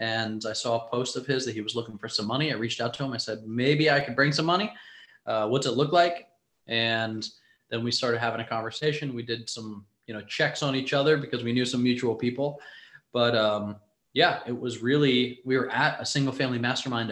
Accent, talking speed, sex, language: American, 235 wpm, male, English